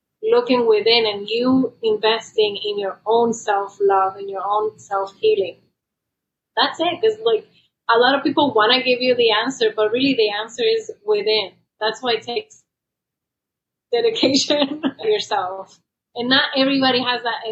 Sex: female